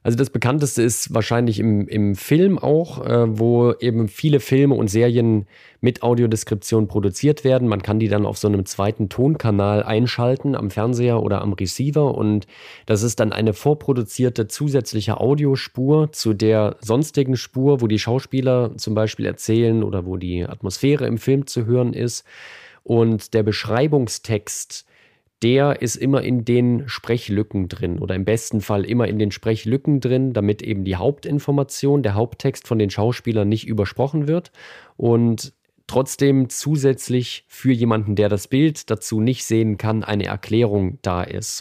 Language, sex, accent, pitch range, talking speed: German, male, German, 105-130 Hz, 155 wpm